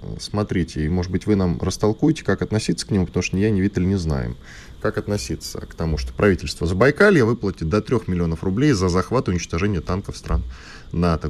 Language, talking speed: Russian, 200 wpm